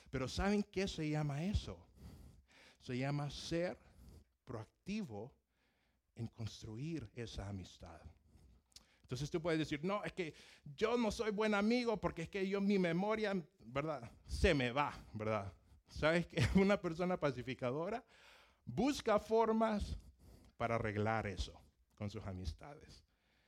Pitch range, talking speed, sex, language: 100-160 Hz, 130 wpm, male, Spanish